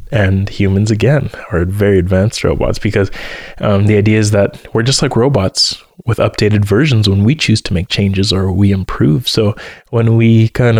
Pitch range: 100-115 Hz